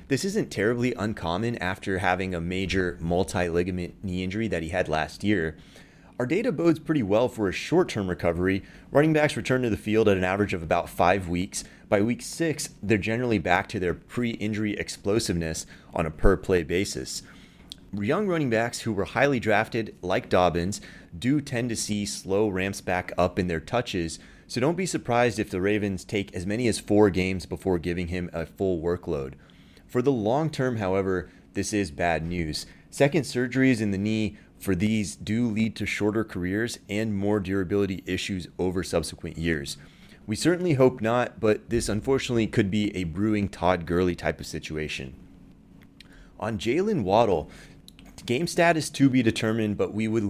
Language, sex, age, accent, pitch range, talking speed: English, male, 30-49, American, 90-115 Hz, 175 wpm